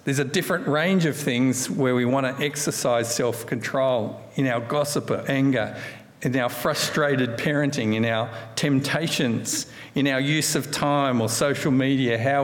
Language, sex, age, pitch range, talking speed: English, male, 50-69, 115-145 Hz, 160 wpm